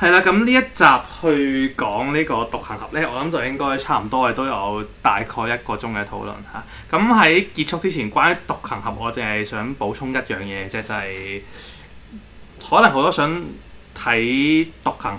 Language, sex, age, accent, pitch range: Chinese, male, 20-39, native, 105-135 Hz